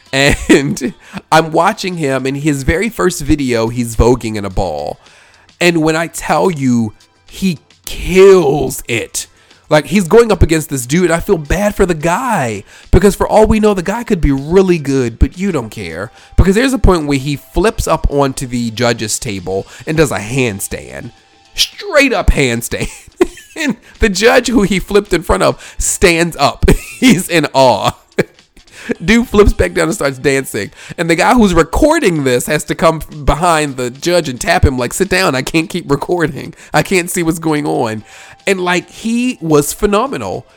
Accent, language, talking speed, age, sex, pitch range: American, English, 180 wpm, 40-59, male, 125-190 Hz